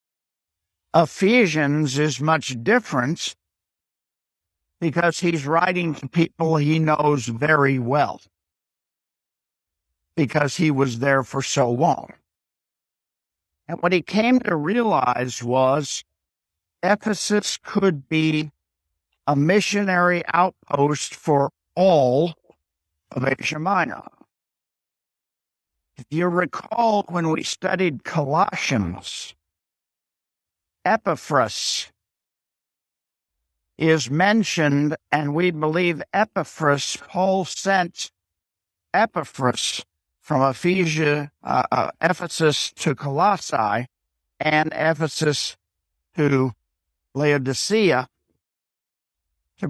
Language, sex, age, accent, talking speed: English, male, 50-69, American, 80 wpm